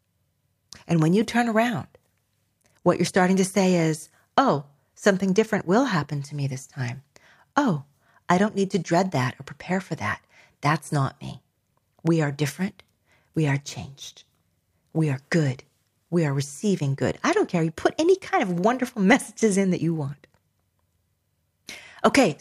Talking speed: 165 wpm